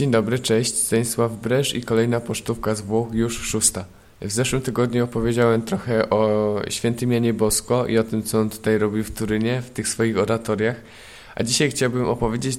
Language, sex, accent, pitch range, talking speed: Polish, male, native, 105-120 Hz, 180 wpm